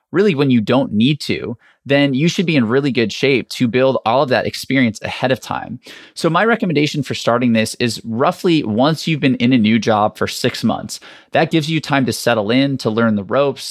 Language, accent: English, American